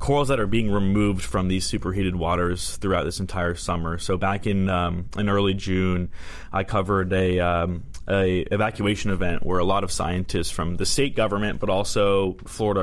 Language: English